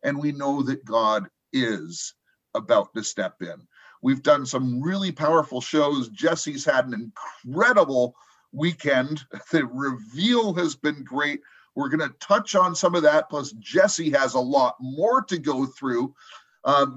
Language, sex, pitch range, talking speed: English, male, 140-180 Hz, 155 wpm